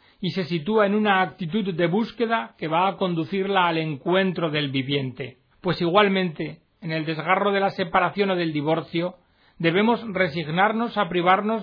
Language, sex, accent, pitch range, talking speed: Spanish, male, Spanish, 145-190 Hz, 160 wpm